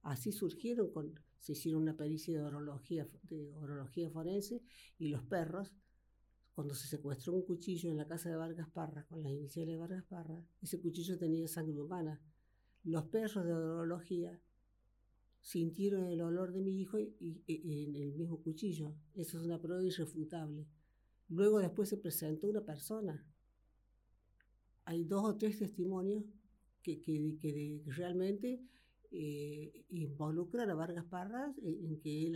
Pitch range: 150-185 Hz